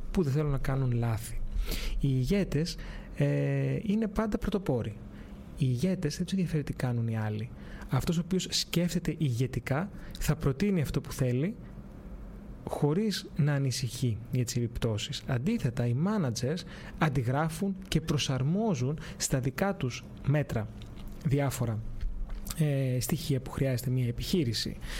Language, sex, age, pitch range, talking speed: Greek, male, 30-49, 125-165 Hz, 125 wpm